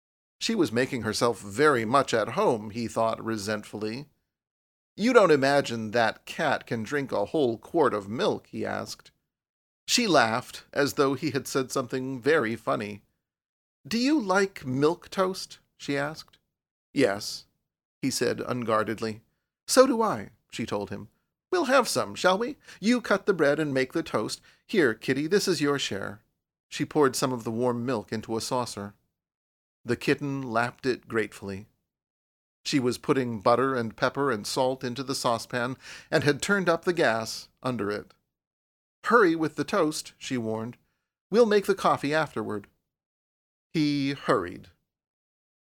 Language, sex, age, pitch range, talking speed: English, male, 40-59, 115-155 Hz, 155 wpm